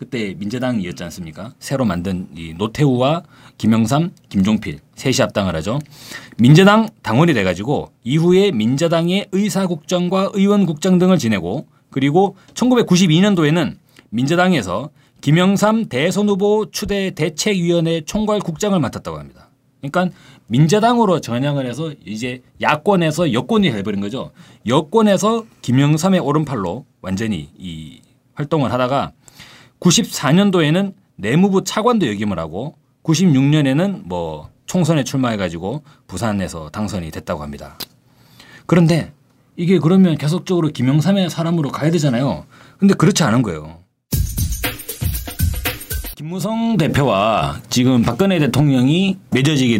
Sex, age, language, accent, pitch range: male, 30-49, Korean, native, 125-185 Hz